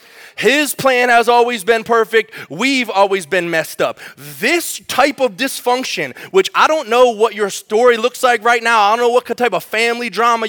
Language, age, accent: English, 20-39, American